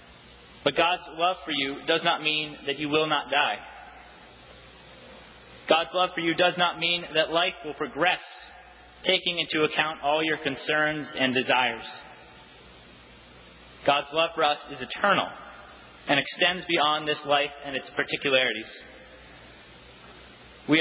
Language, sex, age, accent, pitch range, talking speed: English, male, 30-49, American, 130-160 Hz, 135 wpm